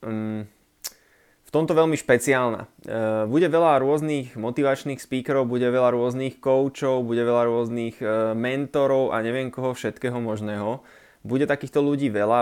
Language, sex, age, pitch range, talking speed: Slovak, male, 20-39, 110-140 Hz, 125 wpm